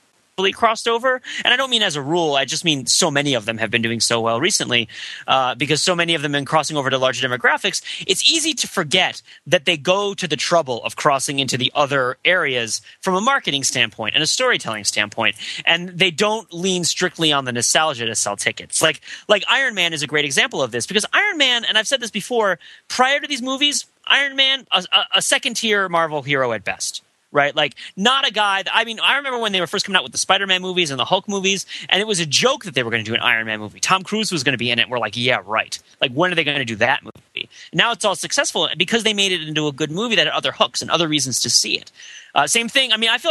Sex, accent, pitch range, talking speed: male, American, 140-210 Hz, 265 wpm